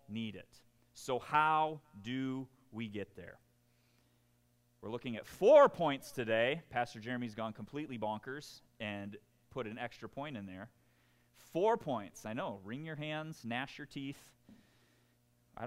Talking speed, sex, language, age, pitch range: 140 wpm, male, English, 30-49, 115-145 Hz